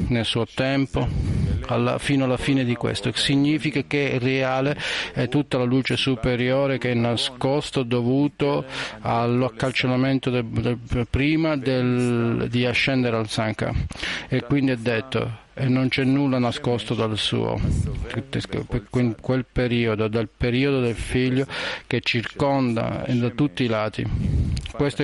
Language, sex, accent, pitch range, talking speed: Italian, male, native, 115-135 Hz, 130 wpm